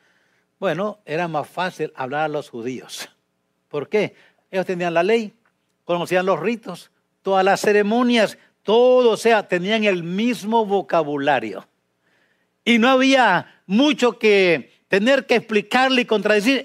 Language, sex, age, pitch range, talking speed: English, male, 60-79, 155-245 Hz, 135 wpm